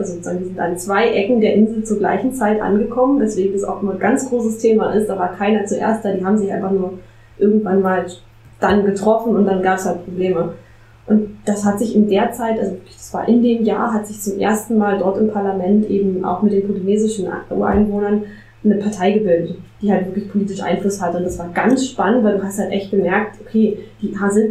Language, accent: German, German